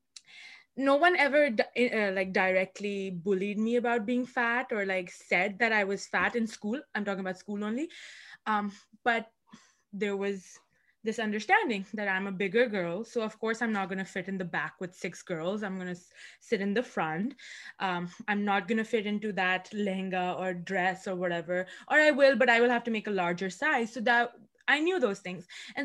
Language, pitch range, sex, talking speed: Urdu, 195-260 Hz, female, 200 wpm